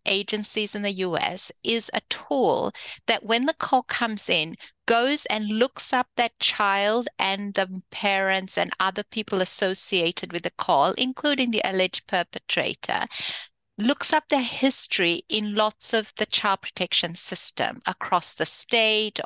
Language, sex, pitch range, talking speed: English, female, 185-245 Hz, 145 wpm